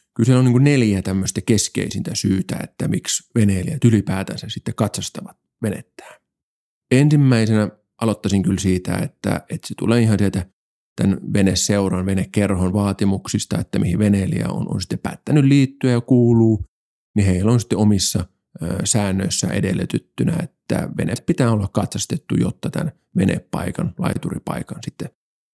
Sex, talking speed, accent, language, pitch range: male, 130 wpm, native, Finnish, 100-125 Hz